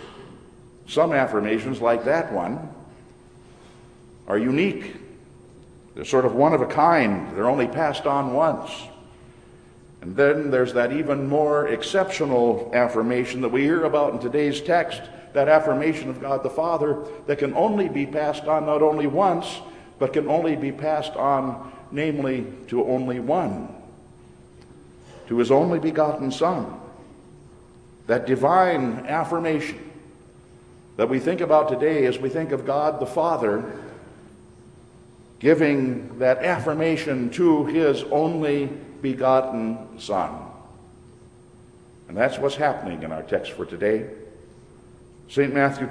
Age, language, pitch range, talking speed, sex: 60-79, English, 130-155 Hz, 130 wpm, male